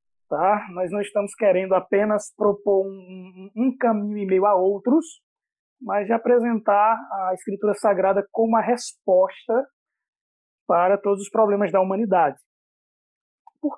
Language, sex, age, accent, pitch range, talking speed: Portuguese, male, 20-39, Brazilian, 195-255 Hz, 120 wpm